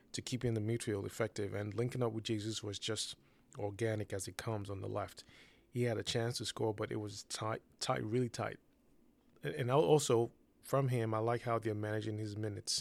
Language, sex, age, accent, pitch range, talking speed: English, male, 20-39, American, 110-120 Hz, 210 wpm